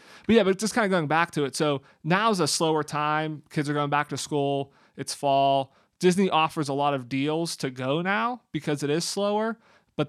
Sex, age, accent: male, 30-49, American